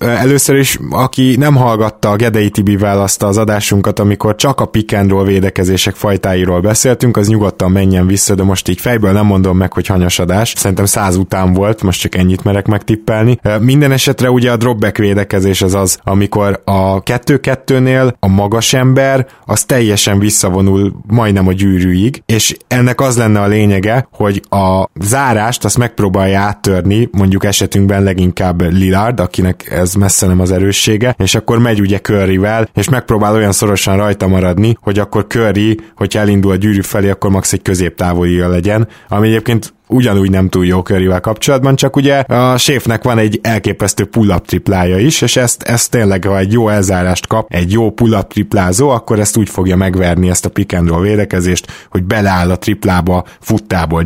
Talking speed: 170 wpm